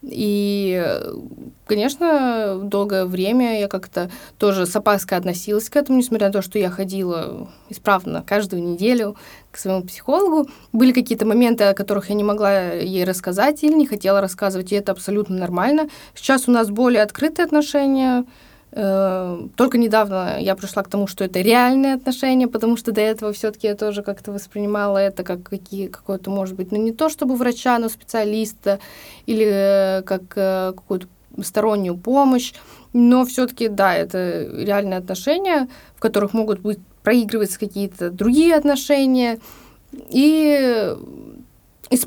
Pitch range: 195-260 Hz